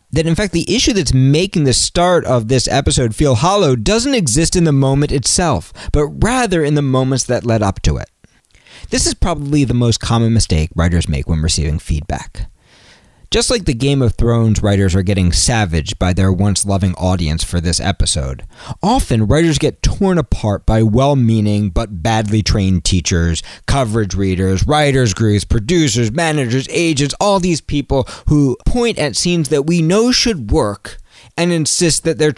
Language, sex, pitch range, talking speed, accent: English, male, 105-155 Hz, 170 wpm, American